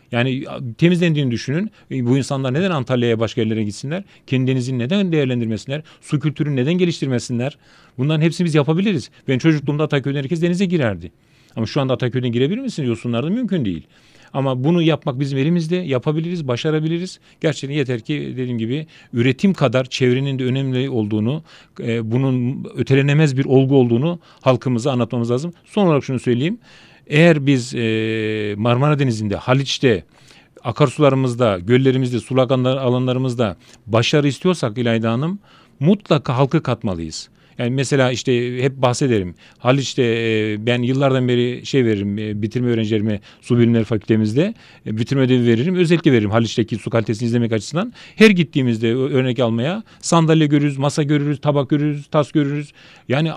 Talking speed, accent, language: 135 wpm, native, Turkish